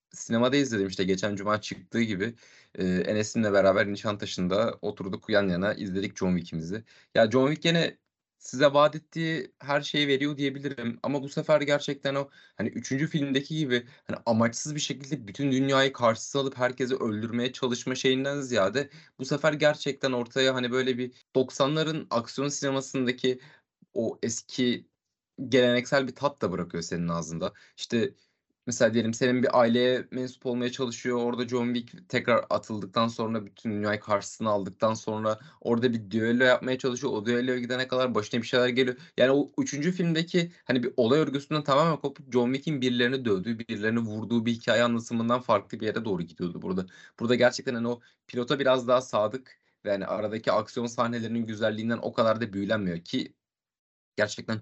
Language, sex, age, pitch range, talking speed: Turkish, male, 30-49, 115-140 Hz, 160 wpm